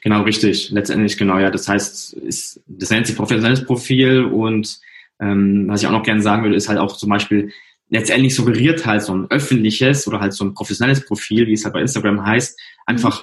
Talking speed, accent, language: 210 wpm, German, German